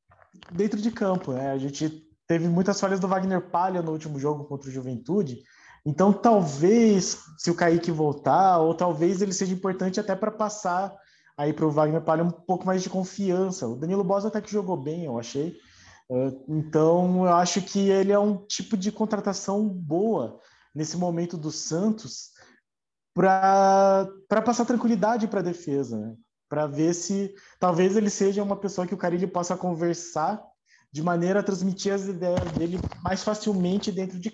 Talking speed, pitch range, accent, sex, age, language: 170 wpm, 160-200 Hz, Brazilian, male, 20-39, Portuguese